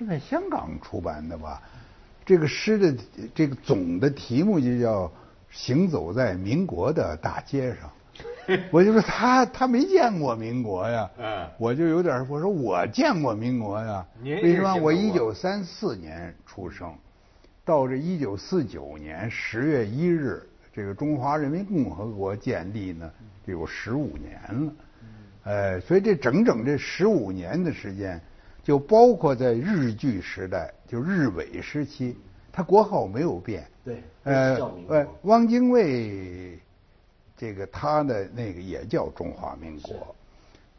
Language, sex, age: Chinese, male, 60-79